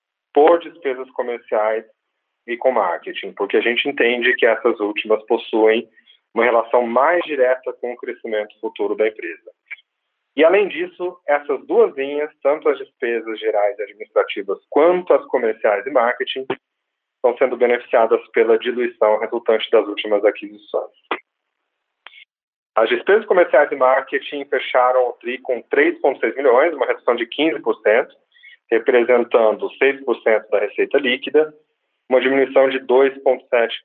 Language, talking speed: Portuguese, 130 wpm